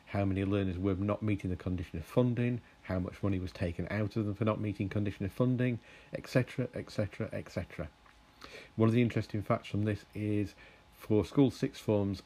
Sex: male